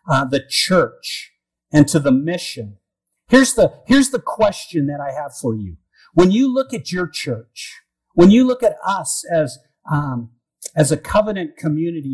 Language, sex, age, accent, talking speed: English, male, 50-69, American, 170 wpm